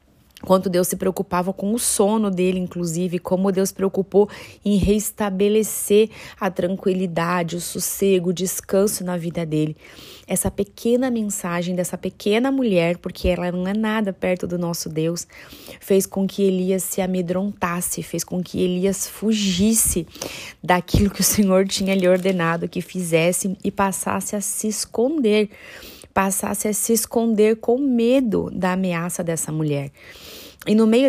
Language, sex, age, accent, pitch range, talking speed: Portuguese, female, 20-39, Brazilian, 180-205 Hz, 150 wpm